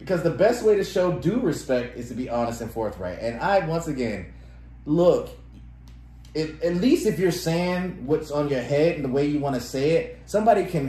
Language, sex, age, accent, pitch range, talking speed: English, male, 30-49, American, 110-140 Hz, 210 wpm